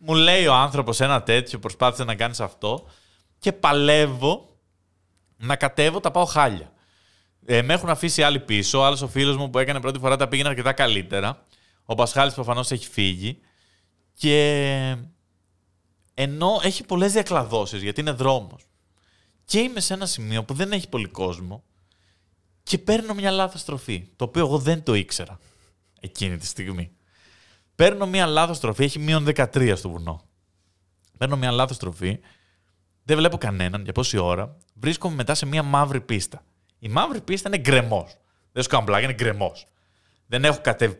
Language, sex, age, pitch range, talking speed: Greek, male, 20-39, 95-145 Hz, 160 wpm